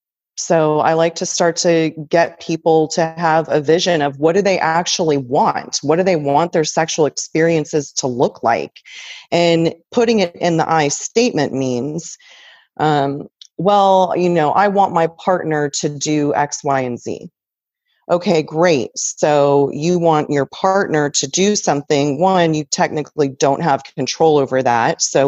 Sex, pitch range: female, 145-175 Hz